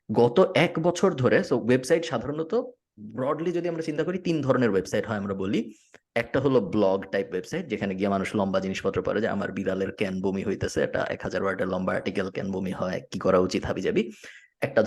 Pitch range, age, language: 105-160 Hz, 20-39, Bengali